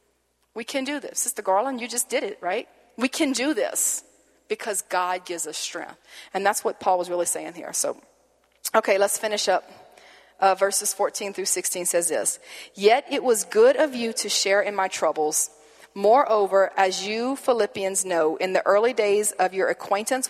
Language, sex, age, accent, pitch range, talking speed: English, female, 40-59, American, 185-225 Hz, 185 wpm